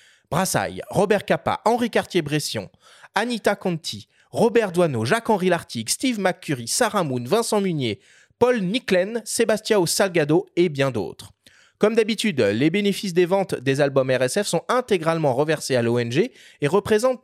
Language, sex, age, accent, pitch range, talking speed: French, male, 30-49, French, 145-210 Hz, 140 wpm